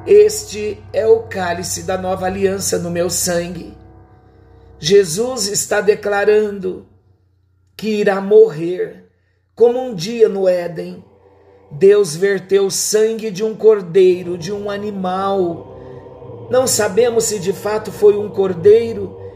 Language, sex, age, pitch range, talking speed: Portuguese, male, 50-69, 130-220 Hz, 120 wpm